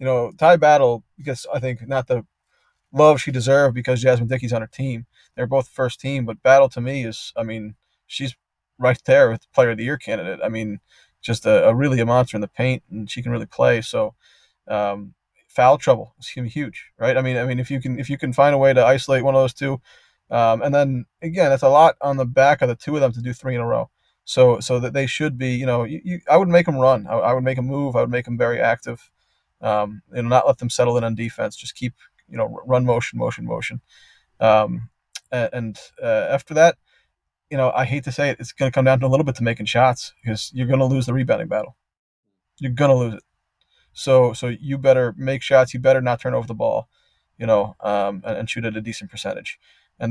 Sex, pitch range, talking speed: male, 120-135 Hz, 245 wpm